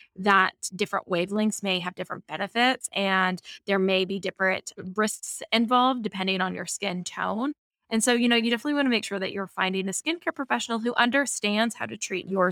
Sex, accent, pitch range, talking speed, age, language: female, American, 190-225 Hz, 195 wpm, 20-39, English